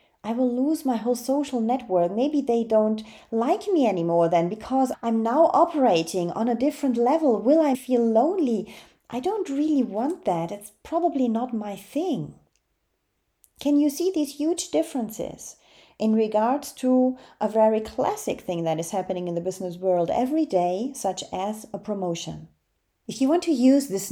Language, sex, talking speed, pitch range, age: English, female, 170 wpm, 180-265 Hz, 30-49